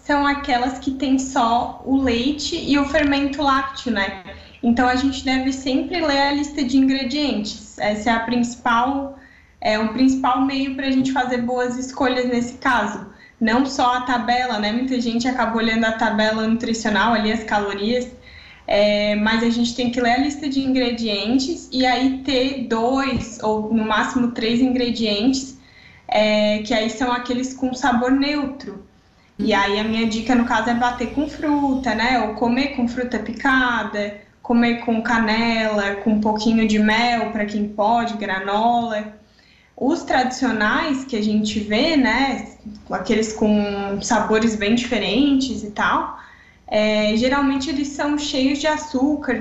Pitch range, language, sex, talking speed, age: 220-265 Hz, Portuguese, female, 160 wpm, 10-29